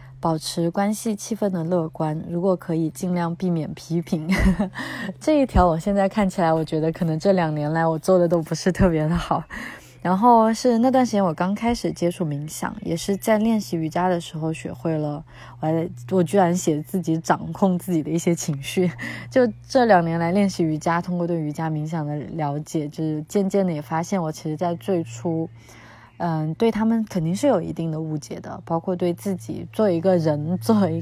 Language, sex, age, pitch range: Chinese, female, 20-39, 155-195 Hz